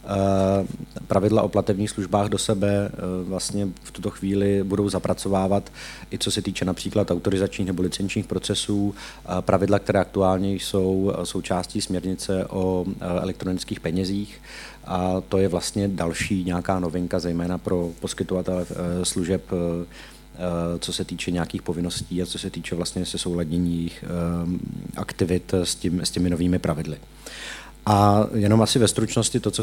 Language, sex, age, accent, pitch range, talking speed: Czech, male, 30-49, native, 90-105 Hz, 135 wpm